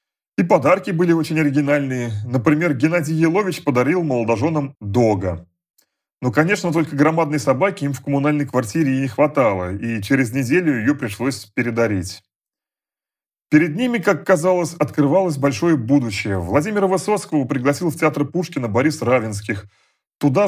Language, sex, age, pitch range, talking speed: Russian, male, 30-49, 125-170 Hz, 130 wpm